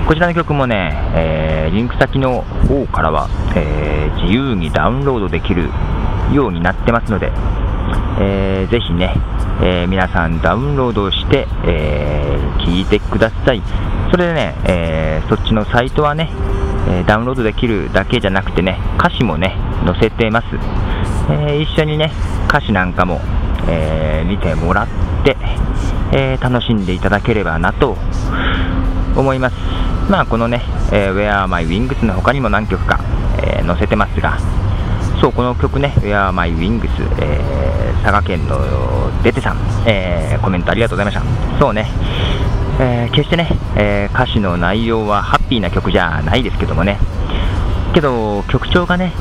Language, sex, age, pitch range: Japanese, male, 40-59, 90-115 Hz